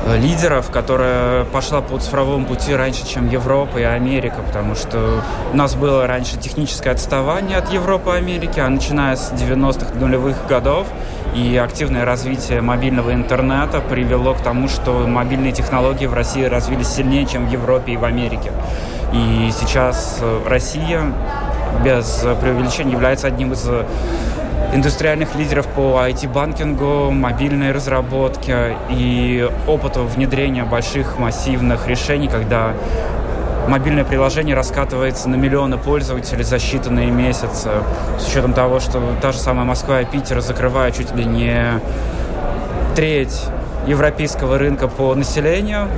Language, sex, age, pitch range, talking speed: Russian, male, 20-39, 120-135 Hz, 130 wpm